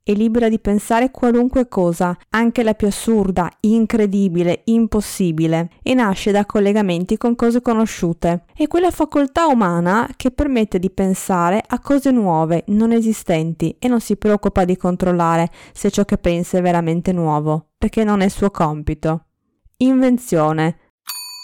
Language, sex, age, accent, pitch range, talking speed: Italian, female, 20-39, native, 175-245 Hz, 145 wpm